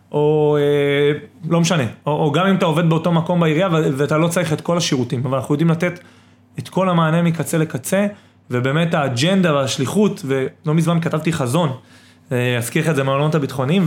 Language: Hebrew